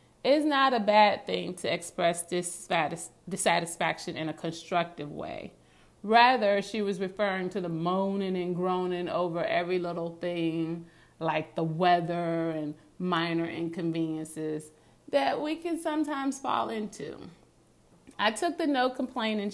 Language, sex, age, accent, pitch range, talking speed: English, female, 30-49, American, 165-210 Hz, 130 wpm